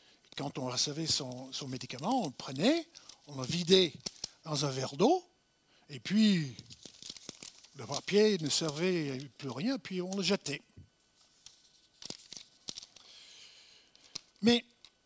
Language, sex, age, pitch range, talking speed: French, male, 60-79, 150-225 Hz, 120 wpm